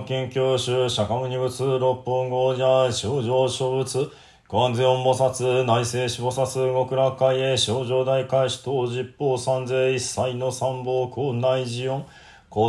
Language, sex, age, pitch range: Japanese, male, 20-39, 125-130 Hz